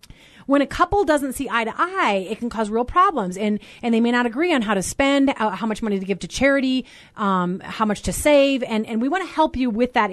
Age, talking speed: 30-49, 265 wpm